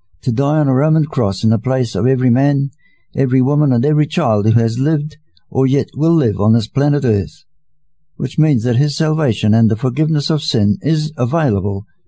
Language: English